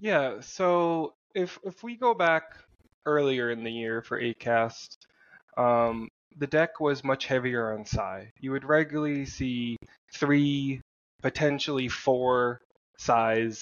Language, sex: English, male